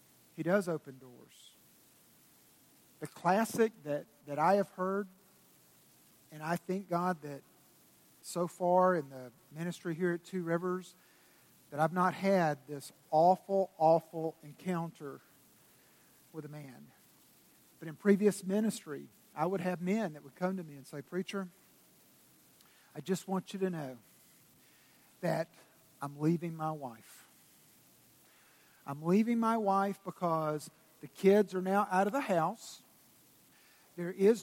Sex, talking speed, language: male, 135 wpm, English